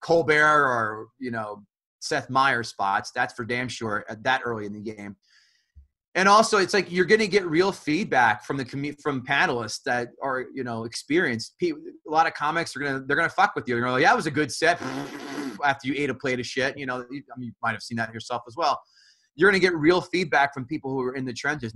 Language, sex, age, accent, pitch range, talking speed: English, male, 30-49, American, 125-155 Hz, 240 wpm